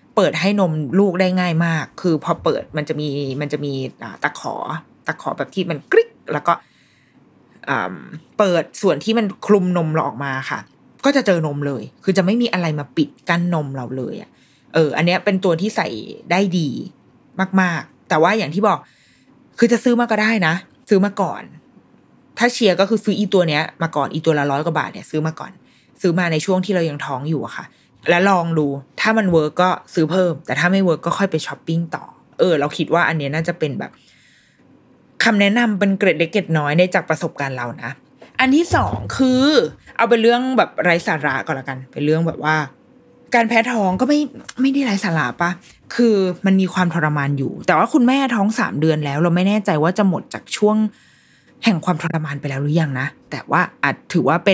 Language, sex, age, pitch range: Thai, female, 20-39, 155-210 Hz